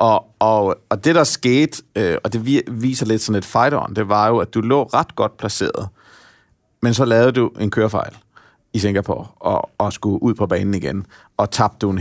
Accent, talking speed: native, 215 wpm